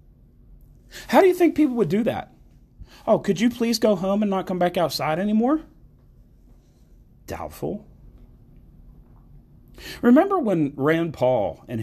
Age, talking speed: 40-59, 130 wpm